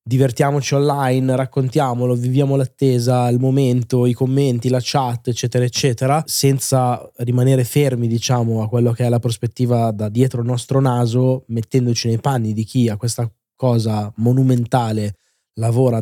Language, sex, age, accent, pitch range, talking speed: Italian, male, 20-39, native, 120-140 Hz, 140 wpm